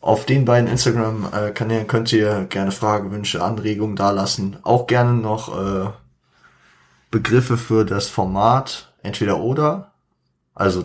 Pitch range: 95-110 Hz